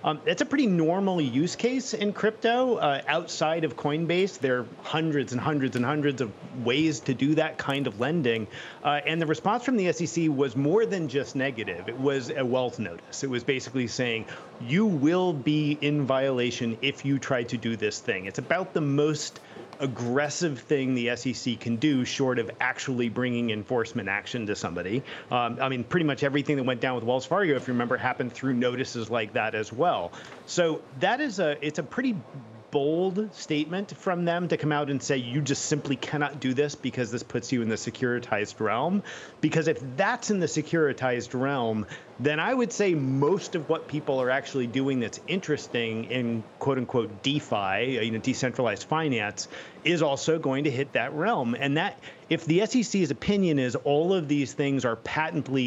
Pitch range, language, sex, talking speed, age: 125-160 Hz, English, male, 195 wpm, 40-59